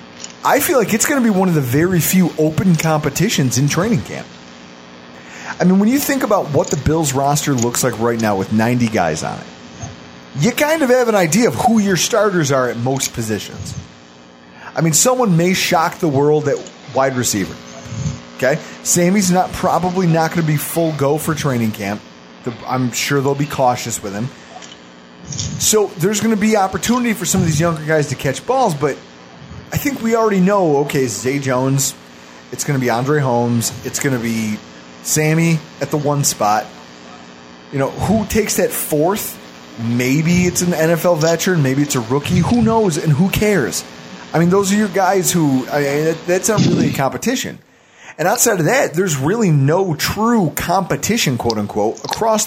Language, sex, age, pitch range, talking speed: English, male, 30-49, 115-185 Hz, 190 wpm